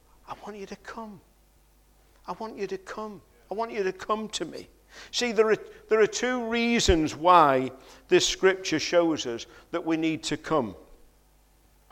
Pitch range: 155-205 Hz